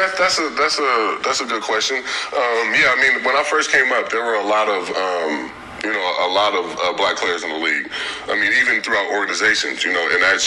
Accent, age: American, 20-39